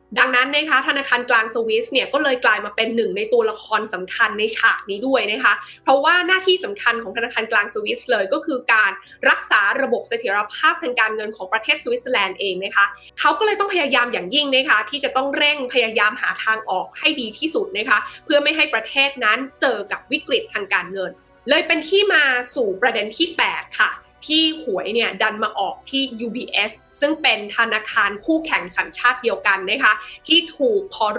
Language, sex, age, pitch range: Thai, female, 20-39, 220-305 Hz